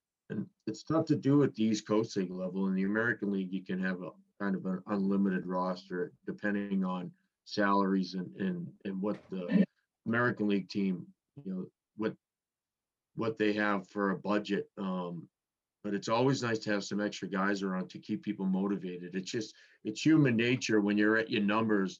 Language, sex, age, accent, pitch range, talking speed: English, male, 40-59, American, 95-110 Hz, 185 wpm